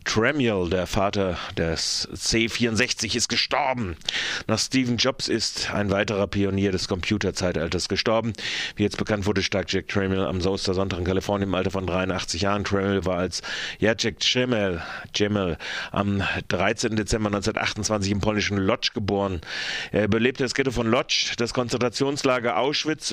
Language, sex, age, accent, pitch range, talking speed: German, male, 30-49, German, 95-115 Hz, 150 wpm